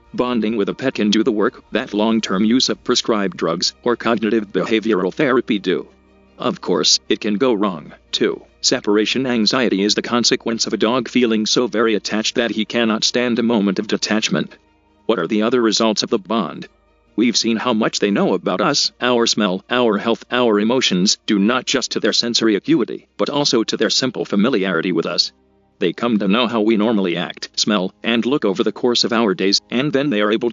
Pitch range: 100-120 Hz